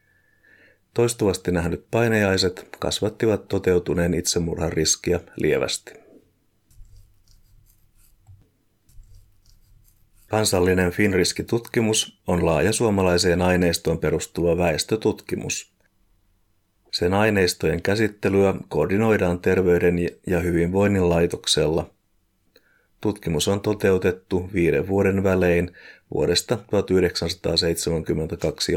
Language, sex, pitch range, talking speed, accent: Finnish, male, 90-100 Hz, 65 wpm, native